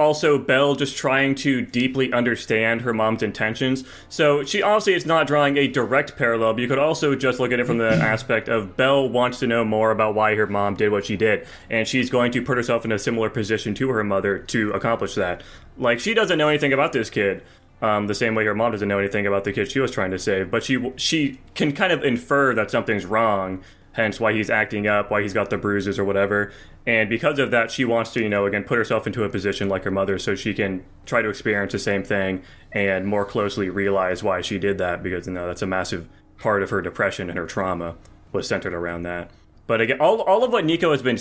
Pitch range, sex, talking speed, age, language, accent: 100-125 Hz, male, 245 wpm, 20-39, English, American